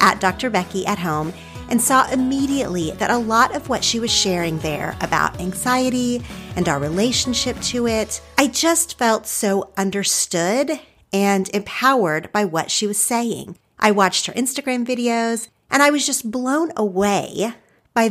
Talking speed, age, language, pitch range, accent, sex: 160 wpm, 40-59, English, 180-240 Hz, American, female